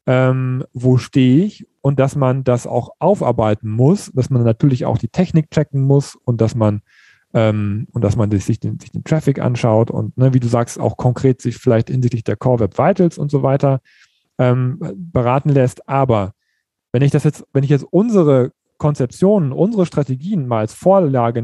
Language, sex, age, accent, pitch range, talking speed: German, male, 40-59, German, 115-150 Hz, 190 wpm